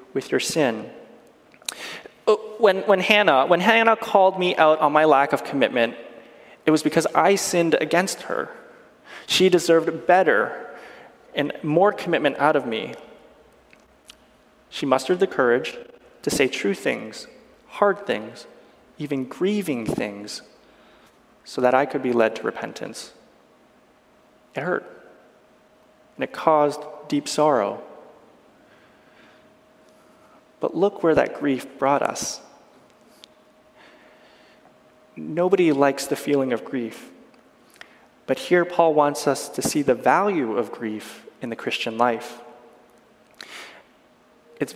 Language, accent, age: English, American, 20-39